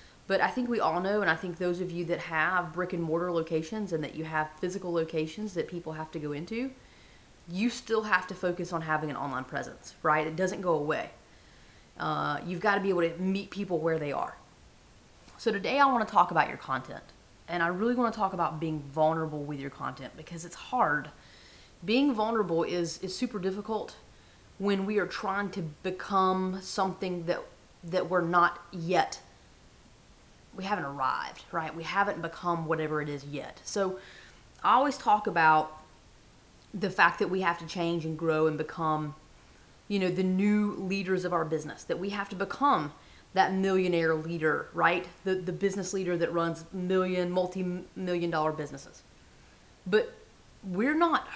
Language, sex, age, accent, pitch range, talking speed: English, female, 30-49, American, 165-200 Hz, 180 wpm